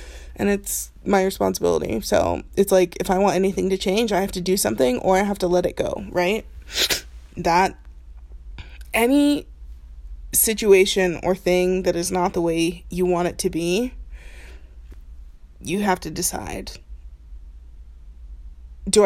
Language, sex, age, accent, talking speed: English, female, 20-39, American, 145 wpm